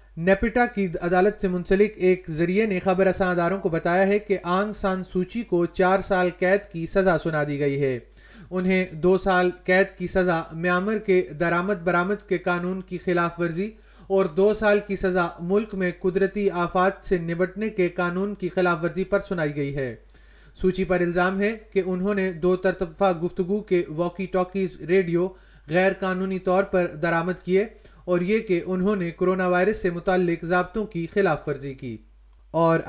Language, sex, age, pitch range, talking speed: Urdu, male, 30-49, 175-195 Hz, 180 wpm